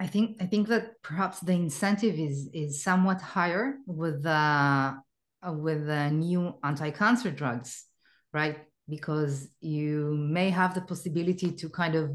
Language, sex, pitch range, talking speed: English, female, 150-190 Hz, 150 wpm